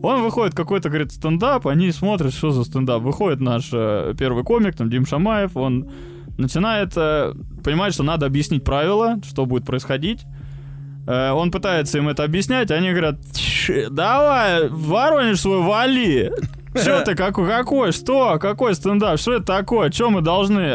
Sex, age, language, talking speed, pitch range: male, 20-39, Russian, 155 wpm, 130-185 Hz